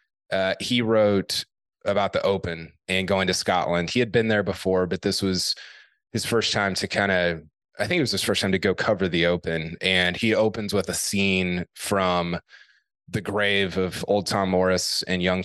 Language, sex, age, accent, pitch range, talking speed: English, male, 20-39, American, 90-100 Hz, 200 wpm